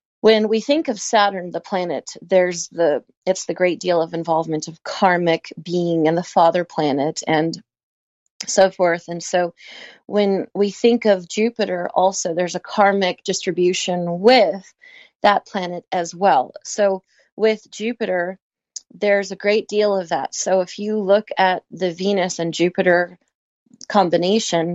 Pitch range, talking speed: 175-210 Hz, 150 wpm